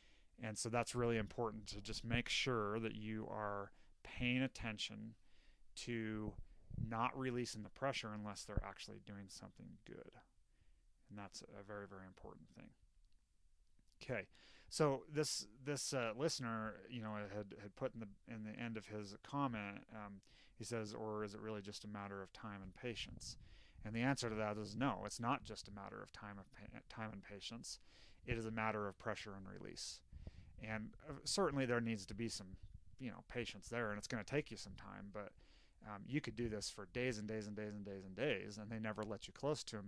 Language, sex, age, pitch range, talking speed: English, male, 30-49, 100-115 Hz, 200 wpm